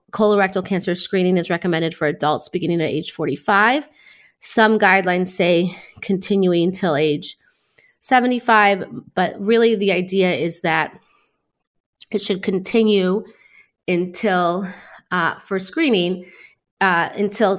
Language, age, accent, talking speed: English, 30-49, American, 115 wpm